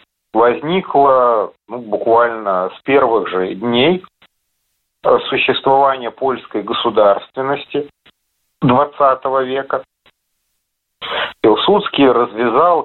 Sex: male